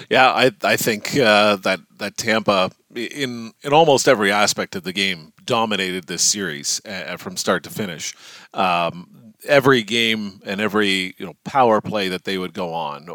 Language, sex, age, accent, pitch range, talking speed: English, male, 40-59, American, 95-110 Hz, 175 wpm